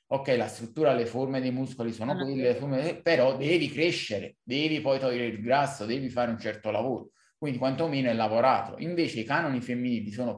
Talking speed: 180 wpm